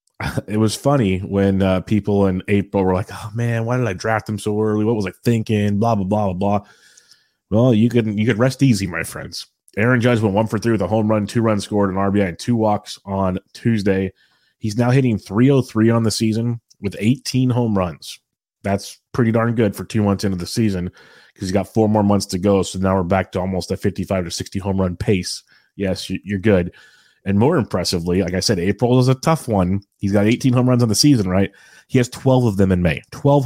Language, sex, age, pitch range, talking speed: English, male, 30-49, 95-115 Hz, 235 wpm